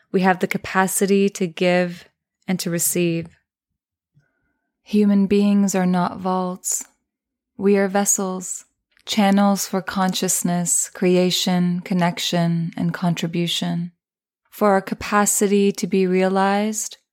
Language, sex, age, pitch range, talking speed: English, female, 20-39, 175-200 Hz, 105 wpm